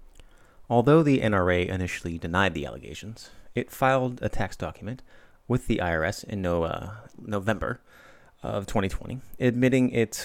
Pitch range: 90-120 Hz